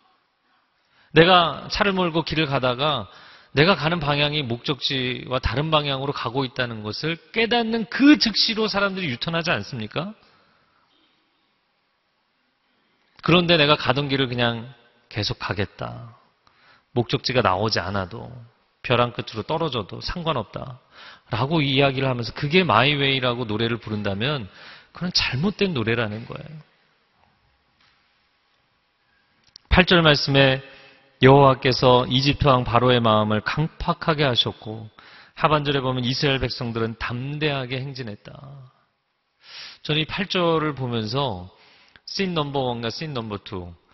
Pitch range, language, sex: 120-155 Hz, Korean, male